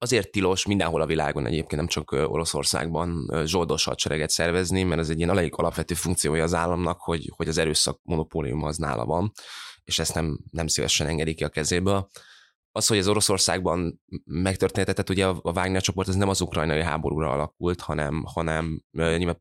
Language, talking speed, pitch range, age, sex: Hungarian, 165 wpm, 80-90 Hz, 20-39, male